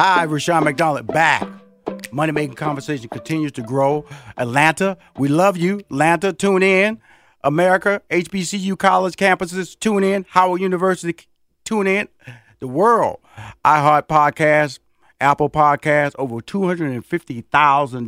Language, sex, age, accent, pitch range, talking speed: English, male, 40-59, American, 115-155 Hz, 115 wpm